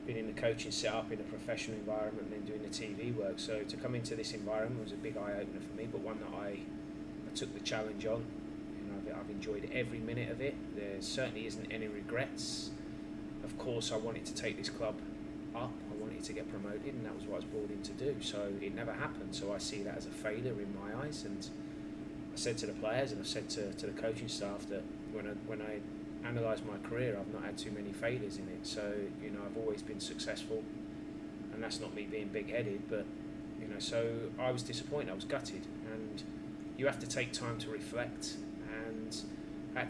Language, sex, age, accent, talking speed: English, male, 20-39, British, 225 wpm